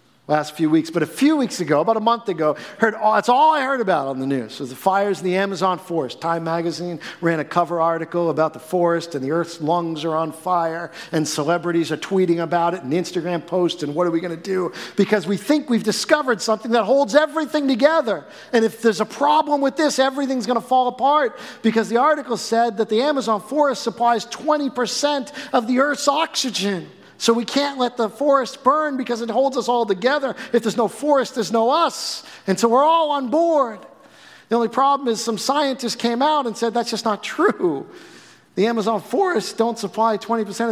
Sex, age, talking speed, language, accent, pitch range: male, 50-69, 210 wpm, English, American, 165-250 Hz